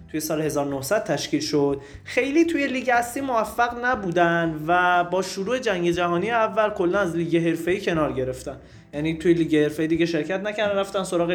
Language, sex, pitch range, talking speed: Persian, male, 145-185 Hz, 170 wpm